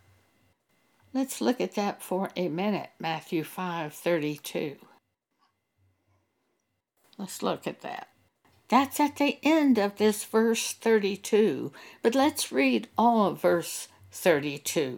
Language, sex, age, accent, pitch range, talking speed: English, female, 60-79, American, 175-235 Hz, 110 wpm